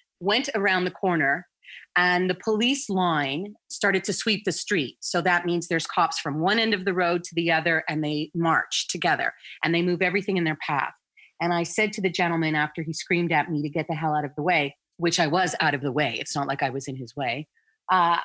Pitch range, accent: 160-200 Hz, American